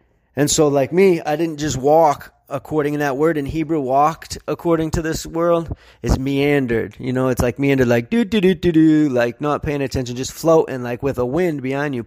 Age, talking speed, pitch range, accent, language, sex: 30-49, 200 wpm, 125-145 Hz, American, English, male